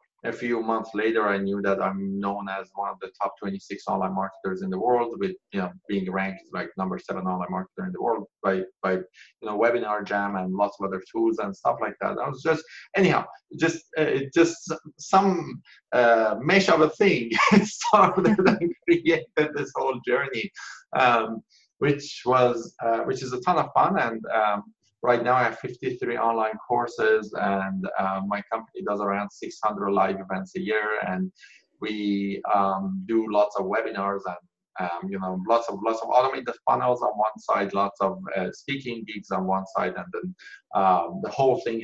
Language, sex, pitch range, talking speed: English, male, 100-145 Hz, 190 wpm